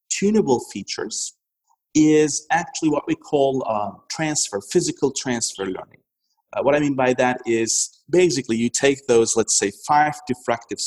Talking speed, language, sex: 150 wpm, English, male